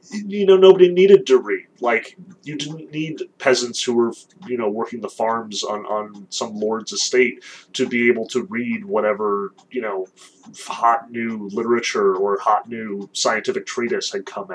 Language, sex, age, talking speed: English, male, 30-49, 170 wpm